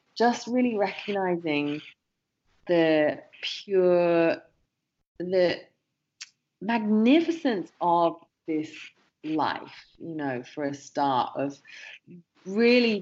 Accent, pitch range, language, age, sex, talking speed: British, 145-190 Hz, English, 30-49, female, 80 wpm